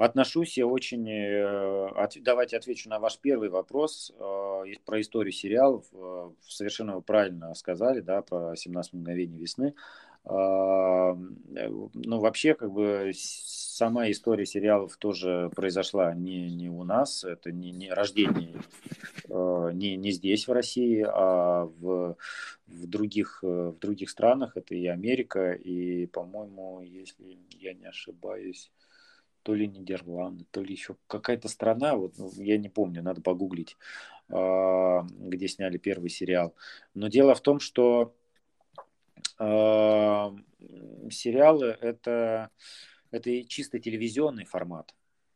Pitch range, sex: 90-110 Hz, male